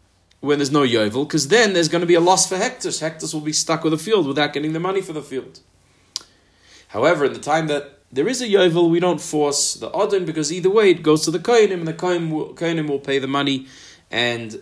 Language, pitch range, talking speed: English, 100-160 Hz, 240 wpm